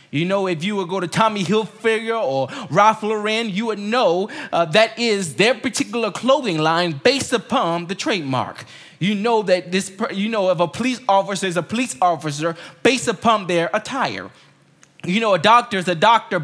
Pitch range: 180-250 Hz